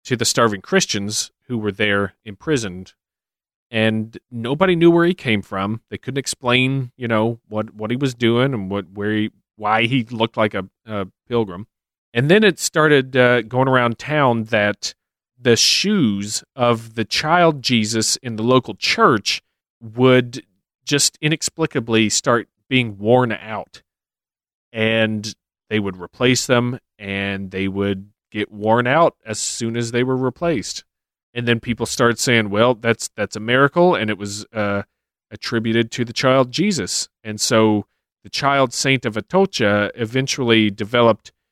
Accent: American